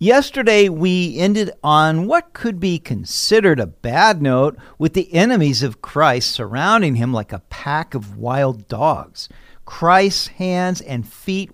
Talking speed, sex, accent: 145 wpm, male, American